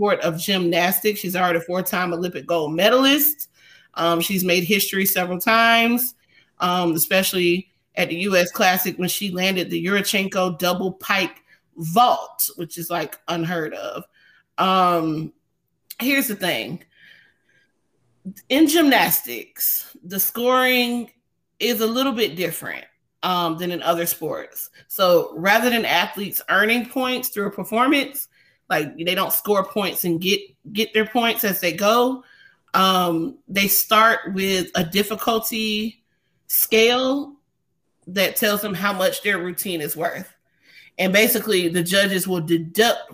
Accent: American